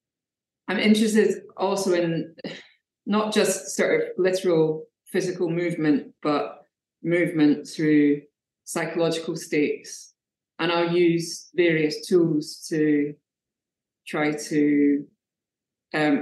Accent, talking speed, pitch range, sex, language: British, 95 wpm, 150-175 Hz, female, English